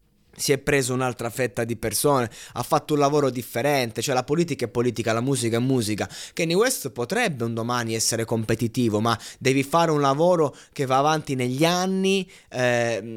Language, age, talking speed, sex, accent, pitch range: Italian, 20-39, 180 wpm, male, native, 110-145 Hz